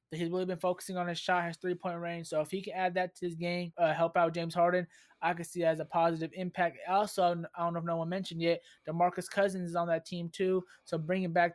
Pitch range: 165-195 Hz